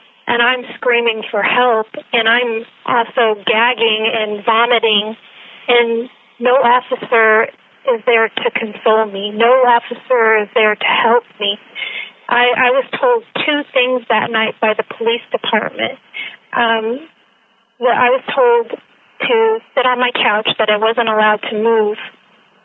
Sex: female